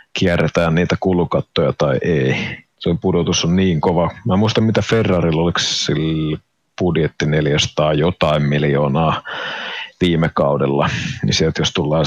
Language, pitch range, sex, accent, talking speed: Finnish, 80-95 Hz, male, native, 125 wpm